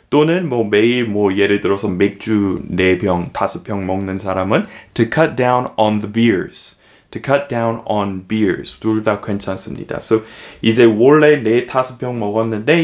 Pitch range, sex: 105-130 Hz, male